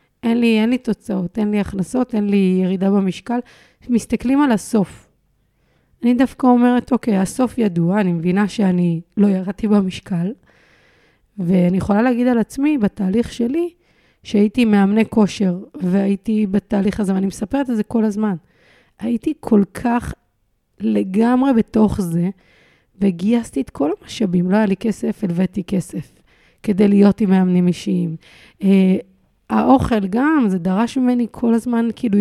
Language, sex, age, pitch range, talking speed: Hebrew, female, 30-49, 185-235 Hz, 140 wpm